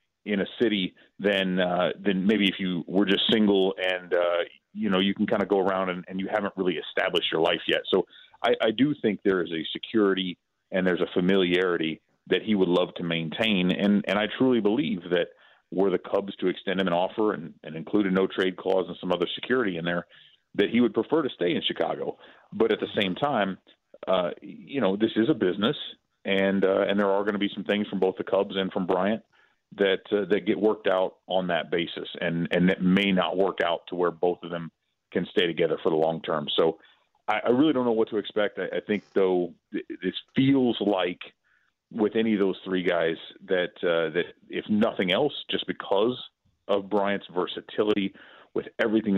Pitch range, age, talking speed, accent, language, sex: 90-105 Hz, 40-59, 215 wpm, American, English, male